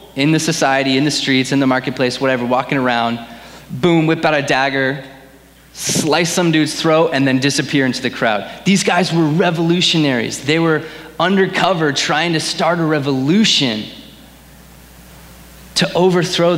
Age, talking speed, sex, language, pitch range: 30-49, 150 wpm, male, English, 135-175 Hz